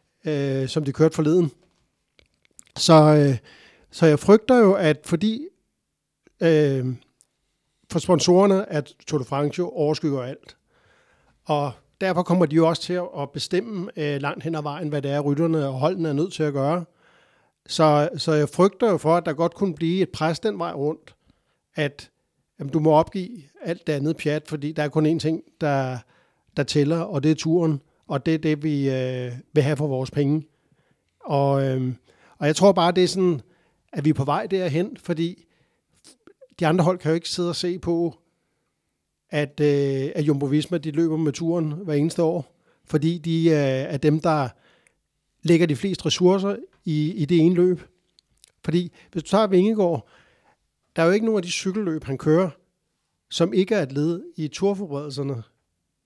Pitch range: 145-175 Hz